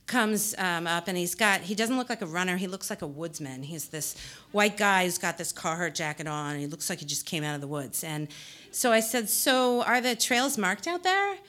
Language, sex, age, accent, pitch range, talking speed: English, female, 40-59, American, 170-250 Hz, 250 wpm